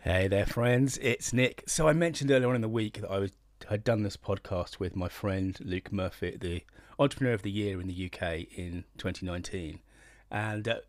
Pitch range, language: 95-110 Hz, English